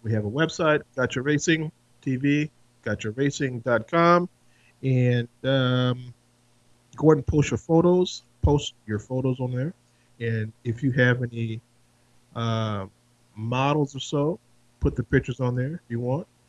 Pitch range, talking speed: 110-135 Hz, 140 wpm